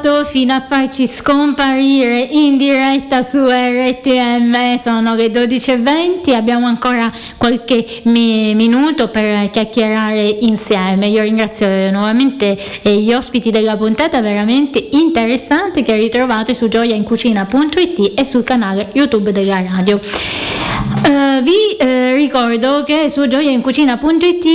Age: 20-39